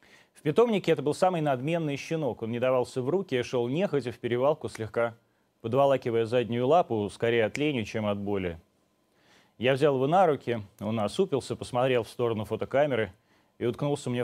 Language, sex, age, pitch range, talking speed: Russian, male, 30-49, 110-140 Hz, 170 wpm